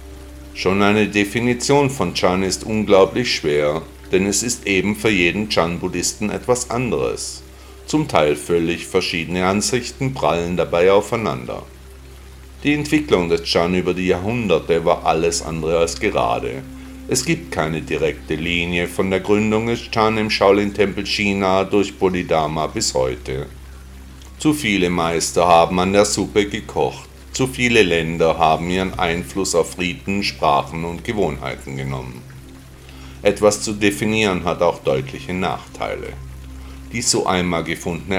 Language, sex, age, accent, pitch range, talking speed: German, male, 50-69, German, 70-100 Hz, 135 wpm